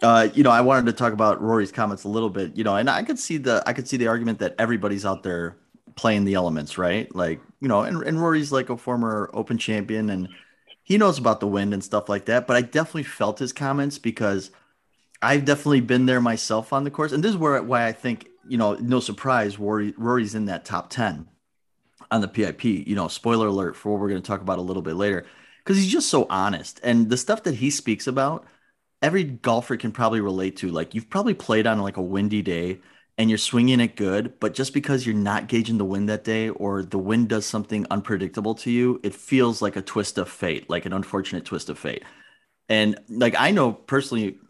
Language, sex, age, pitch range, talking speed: English, male, 30-49, 100-125 Hz, 230 wpm